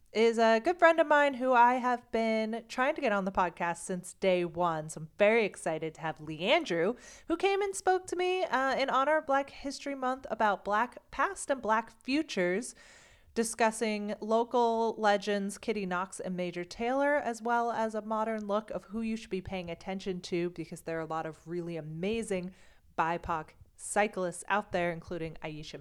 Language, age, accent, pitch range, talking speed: English, 30-49, American, 175-230 Hz, 190 wpm